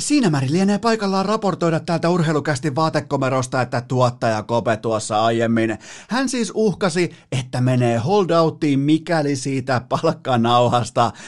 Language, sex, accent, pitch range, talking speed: Finnish, male, native, 120-155 Hz, 110 wpm